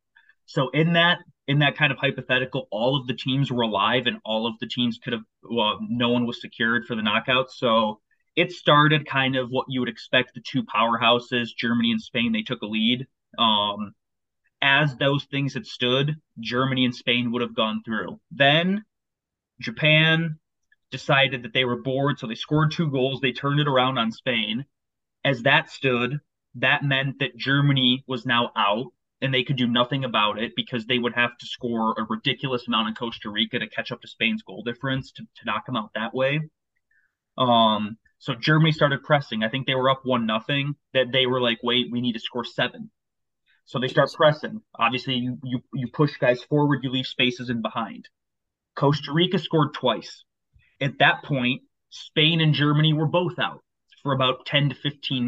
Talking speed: 195 wpm